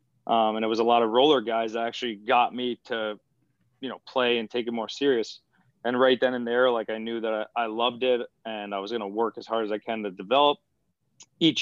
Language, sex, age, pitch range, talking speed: English, male, 20-39, 110-125 Hz, 255 wpm